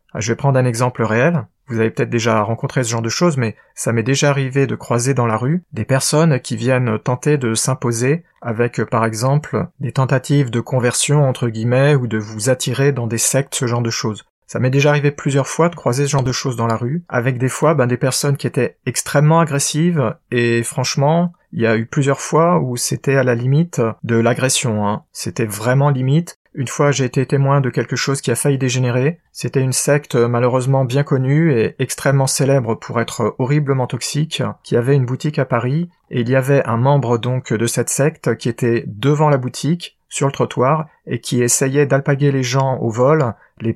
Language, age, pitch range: French, 30-49, 120-145 Hz